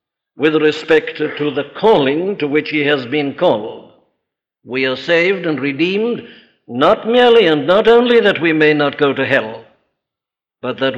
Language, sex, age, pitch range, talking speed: English, male, 60-79, 140-180 Hz, 165 wpm